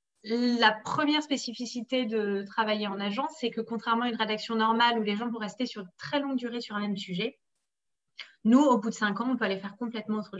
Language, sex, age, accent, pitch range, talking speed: French, female, 30-49, French, 195-240 Hz, 225 wpm